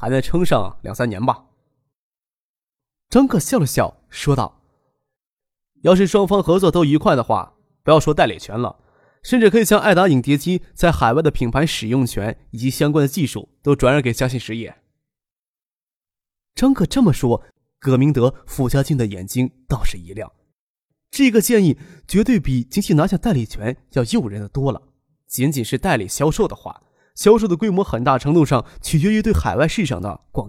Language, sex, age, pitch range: Chinese, male, 20-39, 125-160 Hz